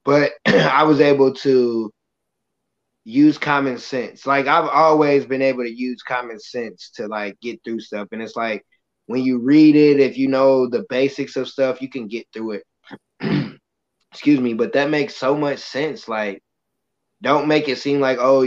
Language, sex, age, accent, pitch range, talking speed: English, male, 20-39, American, 120-140 Hz, 180 wpm